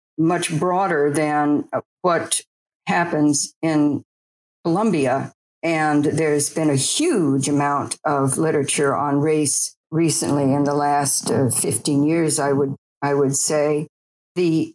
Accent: American